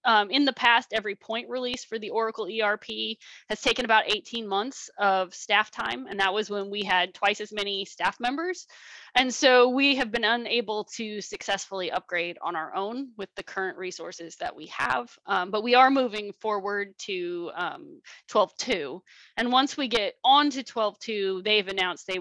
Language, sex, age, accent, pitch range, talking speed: English, female, 20-39, American, 195-250 Hz, 185 wpm